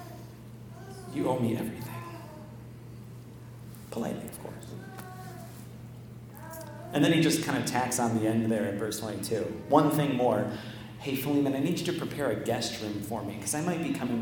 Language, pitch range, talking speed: English, 105-125 Hz, 175 wpm